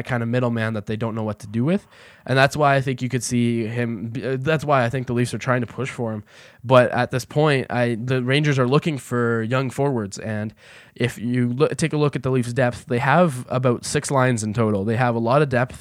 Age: 10-29